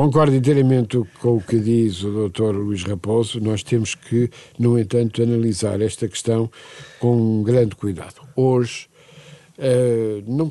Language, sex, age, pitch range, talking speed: Portuguese, male, 60-79, 115-175 Hz, 145 wpm